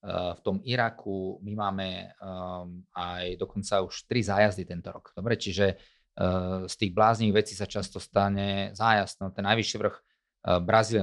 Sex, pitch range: male, 95-110 Hz